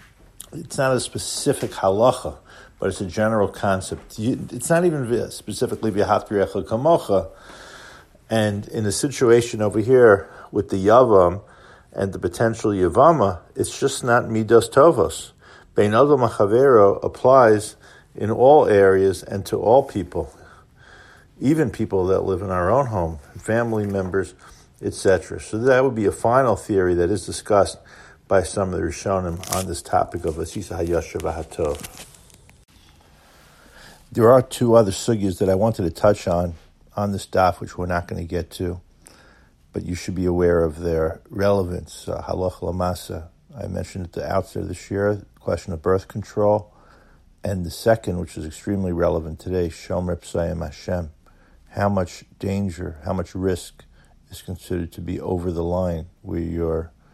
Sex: male